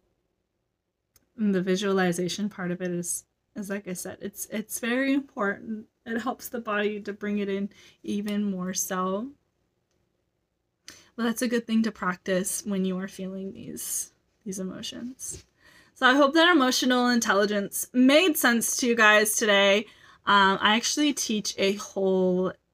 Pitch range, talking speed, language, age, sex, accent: 185-225 Hz, 155 wpm, English, 20-39, female, American